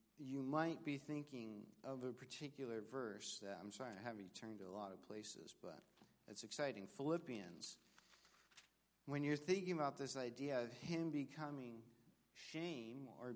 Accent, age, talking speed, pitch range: American, 50-69, 155 wpm, 120-155 Hz